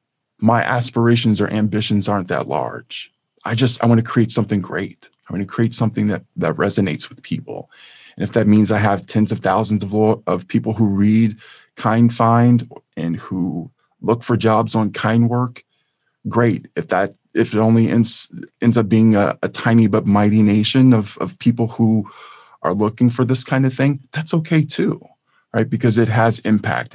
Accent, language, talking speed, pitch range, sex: American, English, 185 wpm, 105-125 Hz, male